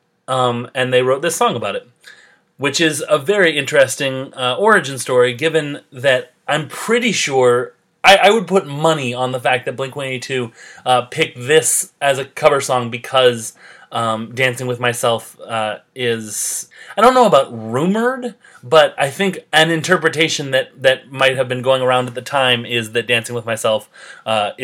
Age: 30-49